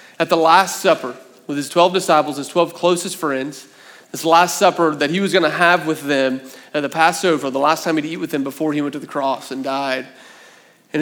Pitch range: 150-185 Hz